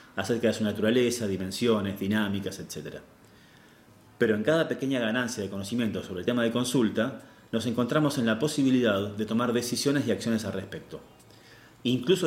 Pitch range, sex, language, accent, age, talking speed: 105-125 Hz, male, Spanish, Argentinian, 30-49, 155 wpm